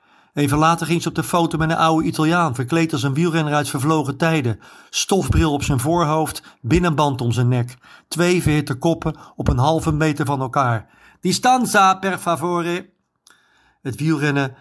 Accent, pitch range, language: Dutch, 135-170 Hz, Dutch